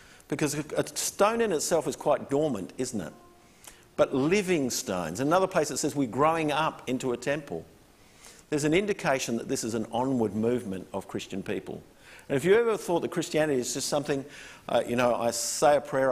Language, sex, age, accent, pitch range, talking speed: English, male, 50-69, Australian, 125-175 Hz, 195 wpm